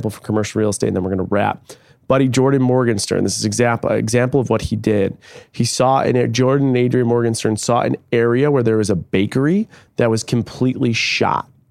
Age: 30-49